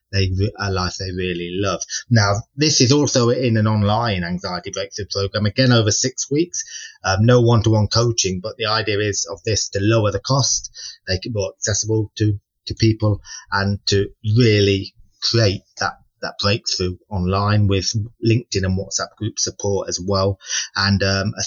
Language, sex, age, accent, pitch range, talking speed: English, male, 30-49, British, 95-115 Hz, 165 wpm